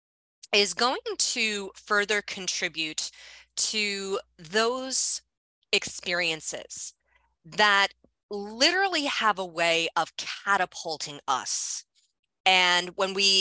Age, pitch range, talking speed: 30-49, 170-230 Hz, 85 wpm